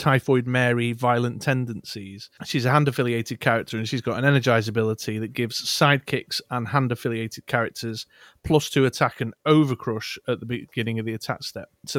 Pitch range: 115-135 Hz